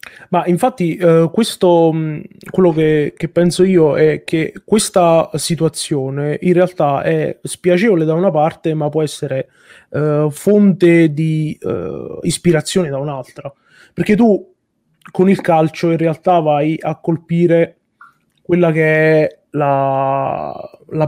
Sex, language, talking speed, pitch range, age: male, Italian, 130 wpm, 150-180 Hz, 20-39